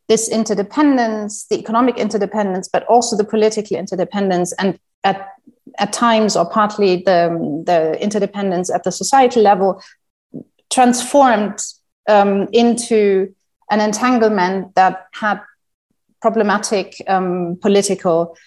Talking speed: 105 wpm